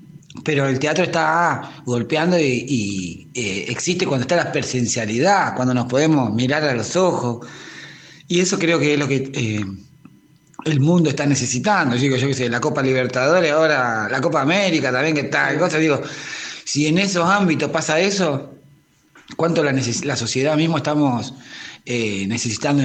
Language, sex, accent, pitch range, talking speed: Spanish, male, Argentinian, 125-160 Hz, 170 wpm